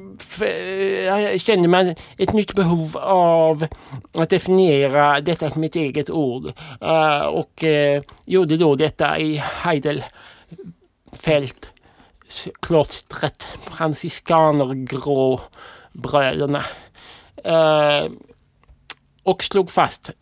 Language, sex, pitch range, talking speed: Swedish, male, 130-165 Hz, 80 wpm